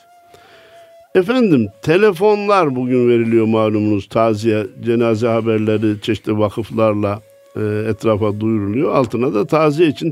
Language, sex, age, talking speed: Turkish, male, 60-79, 100 wpm